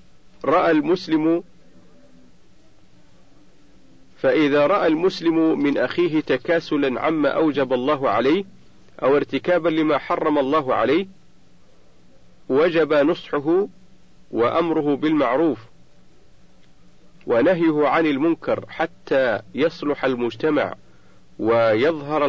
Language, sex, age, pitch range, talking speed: Arabic, male, 40-59, 125-165 Hz, 80 wpm